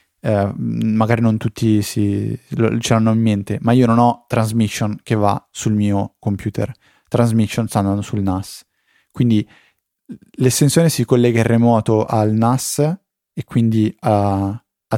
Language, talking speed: Italian, 145 wpm